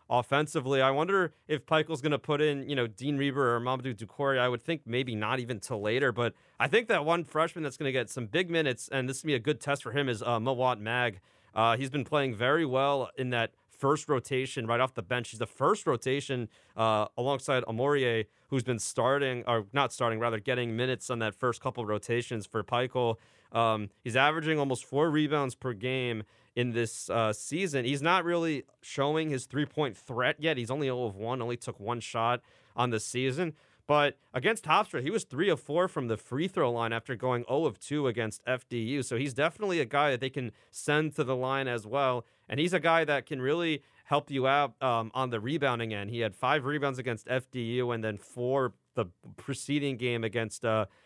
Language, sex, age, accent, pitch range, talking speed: English, male, 30-49, American, 120-145 Hz, 215 wpm